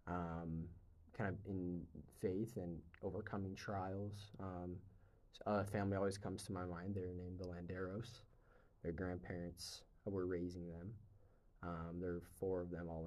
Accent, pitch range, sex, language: American, 90-100 Hz, male, English